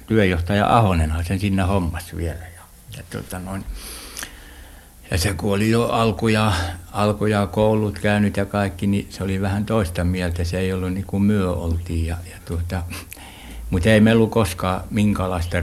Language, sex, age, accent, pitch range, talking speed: Finnish, male, 60-79, native, 85-105 Hz, 165 wpm